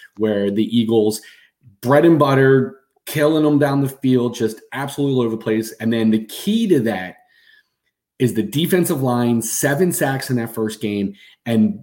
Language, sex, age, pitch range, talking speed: English, male, 30-49, 110-130 Hz, 170 wpm